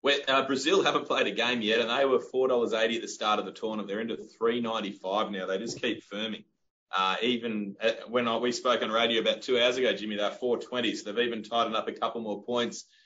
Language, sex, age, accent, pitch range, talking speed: English, male, 20-39, Australian, 105-125 Hz, 210 wpm